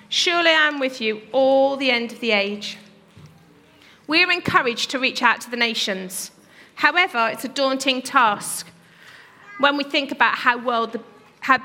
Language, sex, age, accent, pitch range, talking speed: English, female, 40-59, British, 235-330 Hz, 150 wpm